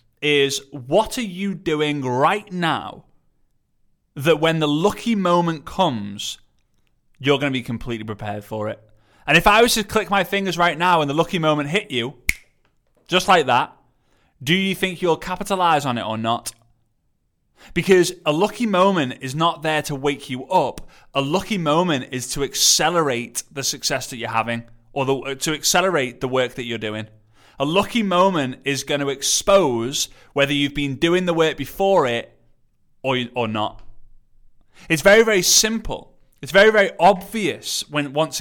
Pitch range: 125-185 Hz